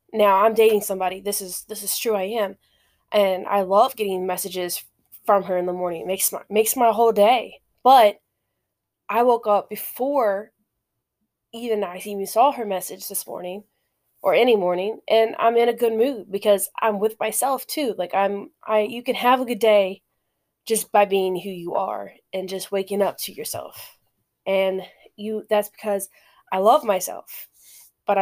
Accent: American